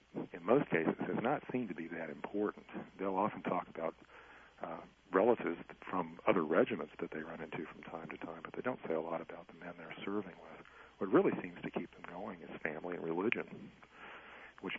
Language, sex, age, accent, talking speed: English, male, 40-59, American, 205 wpm